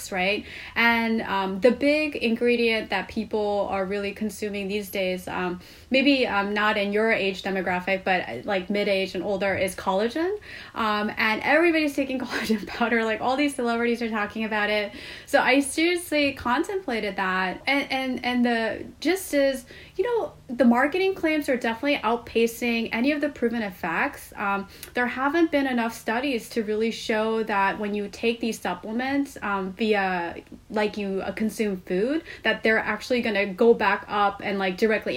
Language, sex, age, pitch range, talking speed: English, female, 20-39, 200-265 Hz, 165 wpm